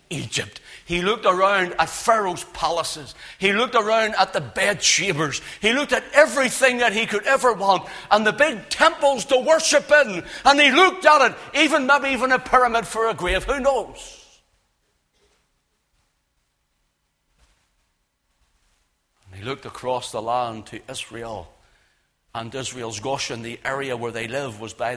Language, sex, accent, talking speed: English, male, British, 145 wpm